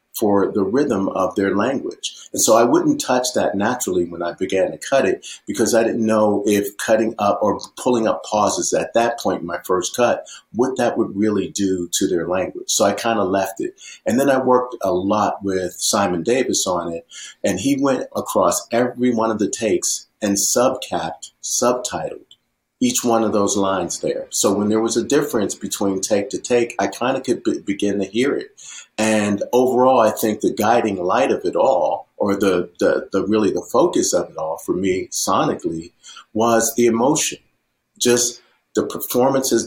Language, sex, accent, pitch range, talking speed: English, male, American, 100-125 Hz, 195 wpm